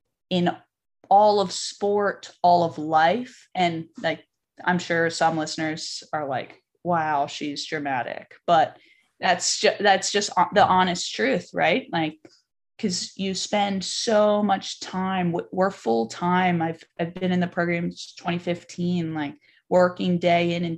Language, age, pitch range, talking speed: English, 20-39, 165-190 Hz, 145 wpm